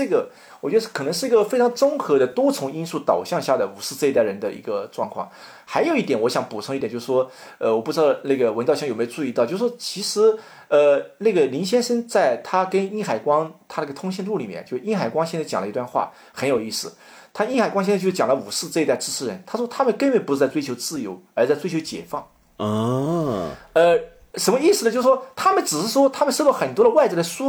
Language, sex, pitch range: Chinese, male, 160-265 Hz